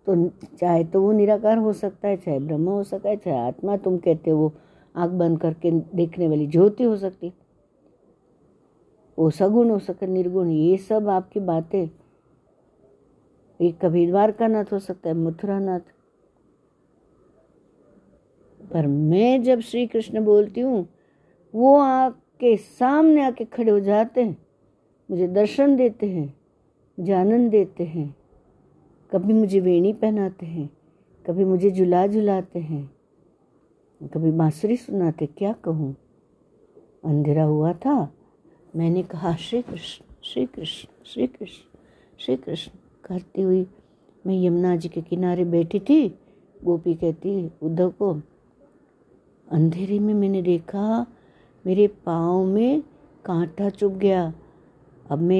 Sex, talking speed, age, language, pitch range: female, 130 wpm, 60-79, Hindi, 170-210 Hz